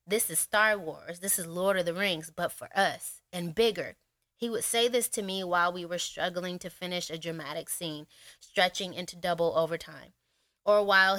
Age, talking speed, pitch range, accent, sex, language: 20-39, 195 wpm, 170-215 Hz, American, female, English